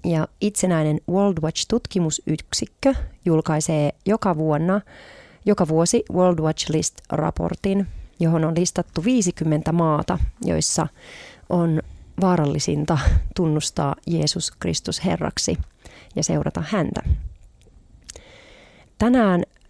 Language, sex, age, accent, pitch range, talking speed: Finnish, female, 30-49, native, 150-180 Hz, 90 wpm